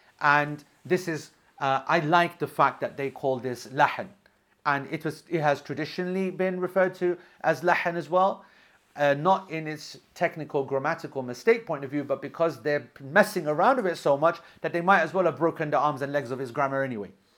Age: 40-59